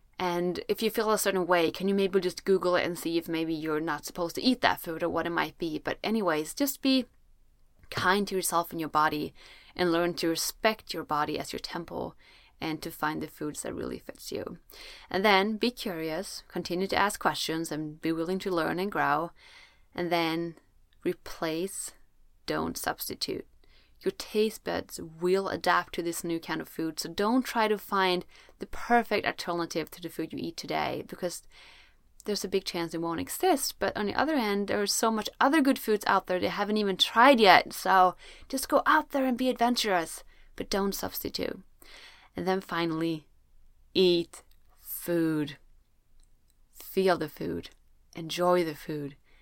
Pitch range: 165-210 Hz